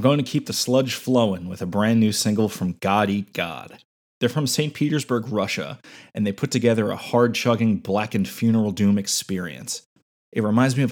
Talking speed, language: 185 wpm, English